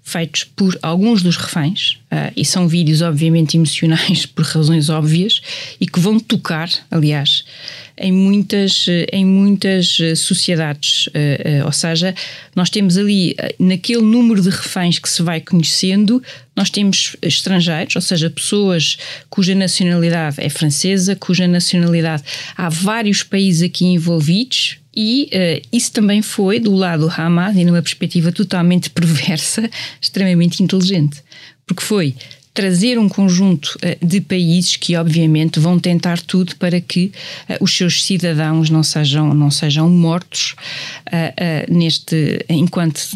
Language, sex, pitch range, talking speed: Portuguese, female, 160-190 Hz, 125 wpm